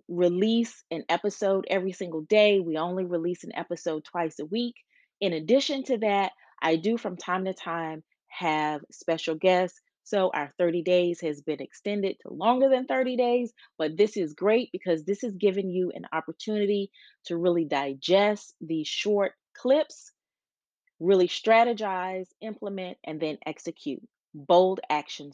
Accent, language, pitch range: American, English, 165-220 Hz